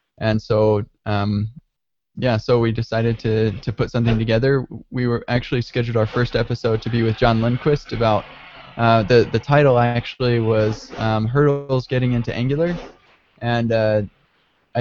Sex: male